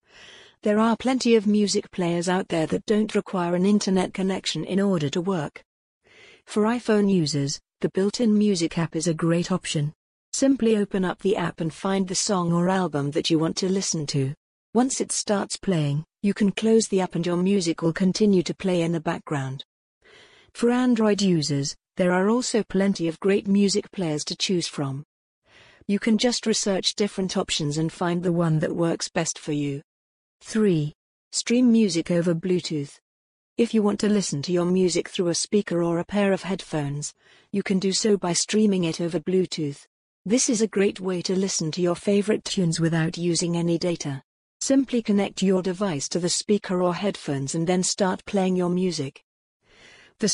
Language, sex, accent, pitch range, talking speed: English, female, British, 170-205 Hz, 185 wpm